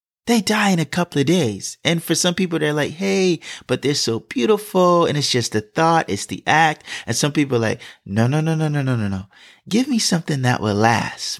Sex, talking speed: male, 230 wpm